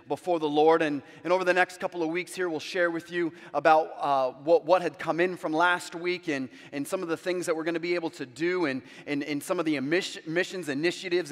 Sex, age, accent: male, 30-49, American